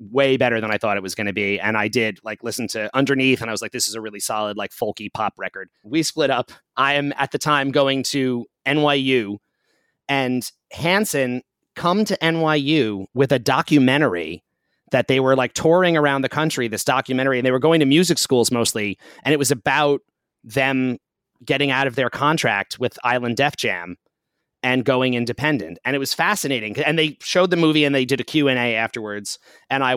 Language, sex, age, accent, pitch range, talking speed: English, male, 30-49, American, 115-145 Hz, 200 wpm